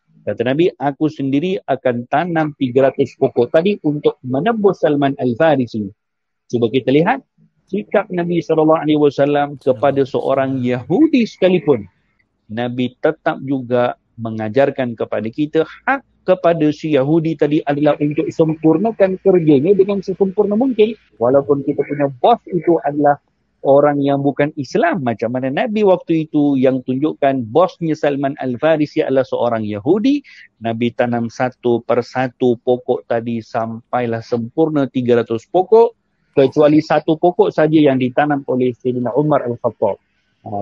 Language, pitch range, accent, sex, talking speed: English, 125-160 Hz, Indonesian, male, 125 wpm